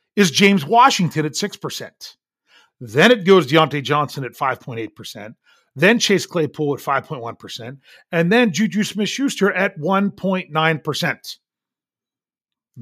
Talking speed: 110 wpm